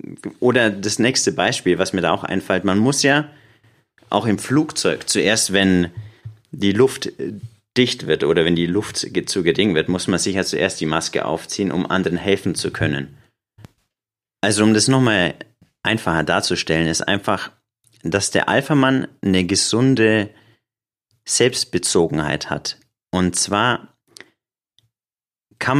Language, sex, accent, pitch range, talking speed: German, male, German, 85-115 Hz, 135 wpm